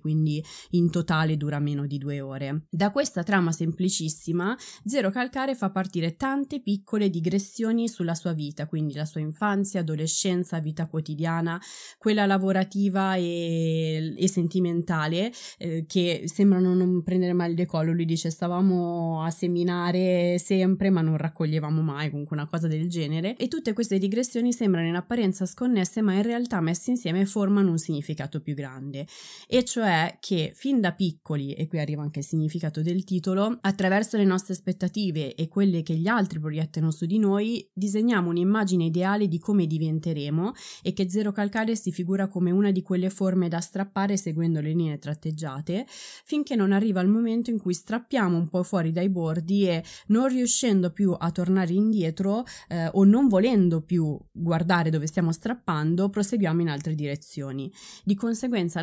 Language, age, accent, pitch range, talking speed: Italian, 20-39, native, 165-200 Hz, 165 wpm